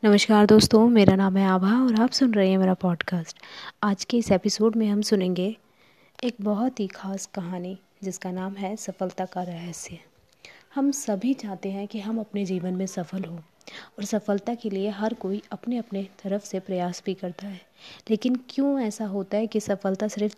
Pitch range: 185-220 Hz